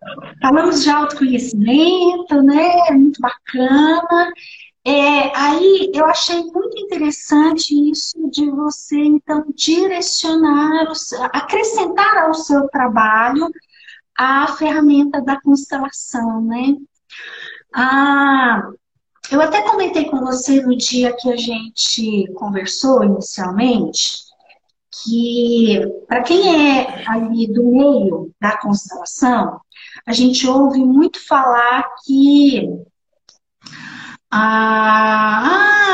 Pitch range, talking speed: 245-330 Hz, 90 wpm